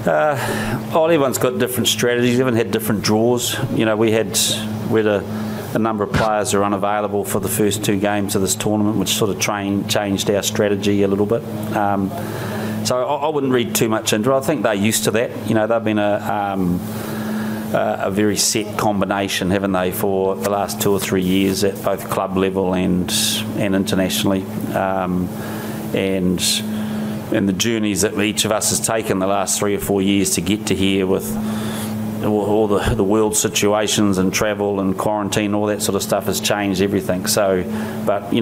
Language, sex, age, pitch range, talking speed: English, male, 30-49, 100-110 Hz, 195 wpm